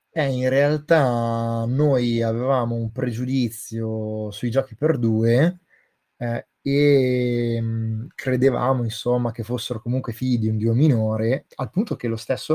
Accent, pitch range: native, 115-135 Hz